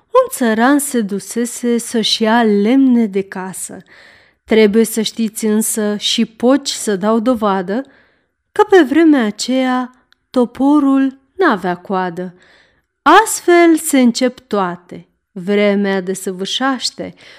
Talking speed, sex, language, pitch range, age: 110 wpm, female, Romanian, 210-275 Hz, 30-49